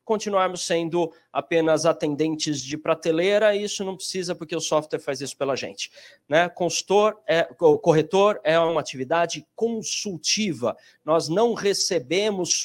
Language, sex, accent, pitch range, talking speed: Portuguese, male, Brazilian, 160-220 Hz, 130 wpm